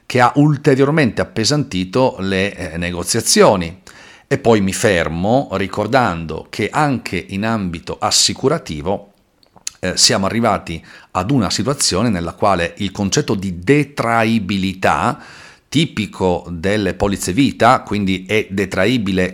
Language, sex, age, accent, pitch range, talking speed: Italian, male, 40-59, native, 95-125 Hz, 110 wpm